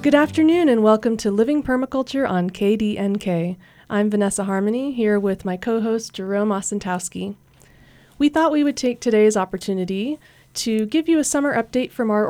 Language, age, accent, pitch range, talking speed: English, 30-49, American, 195-230 Hz, 160 wpm